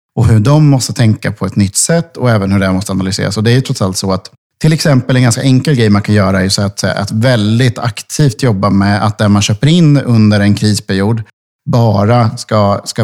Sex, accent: male, Norwegian